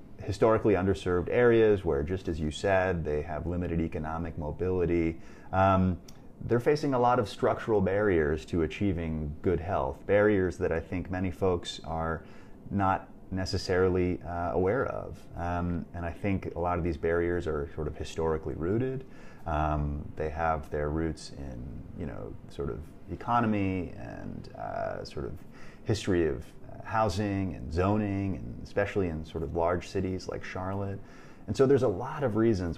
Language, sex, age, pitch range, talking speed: English, male, 30-49, 80-100 Hz, 160 wpm